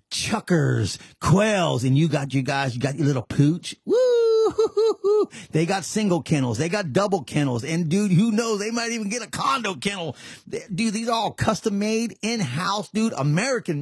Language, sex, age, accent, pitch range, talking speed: English, male, 30-49, American, 120-175 Hz, 185 wpm